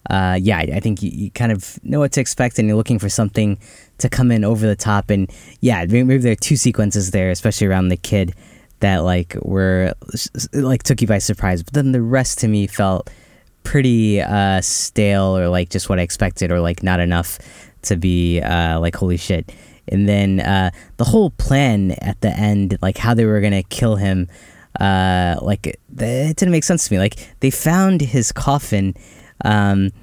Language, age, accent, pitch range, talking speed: English, 10-29, American, 95-115 Hz, 200 wpm